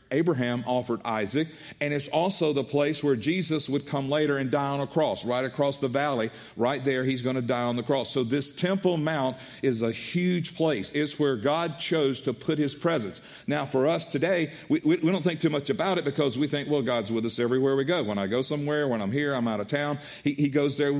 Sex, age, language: male, 50-69, English